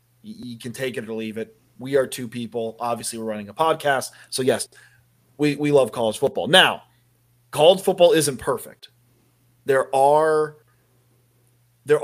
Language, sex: English, male